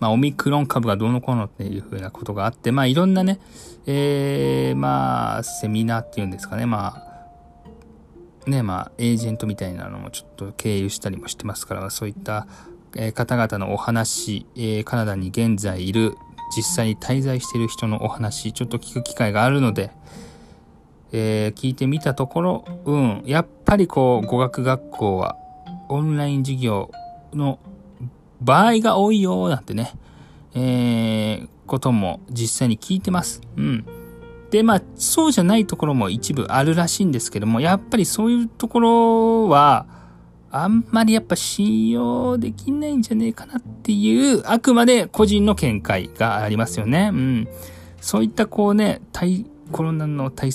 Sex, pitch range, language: male, 110-175 Hz, Japanese